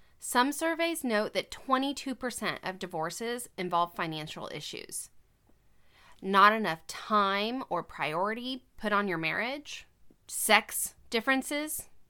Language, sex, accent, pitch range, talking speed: English, female, American, 185-250 Hz, 105 wpm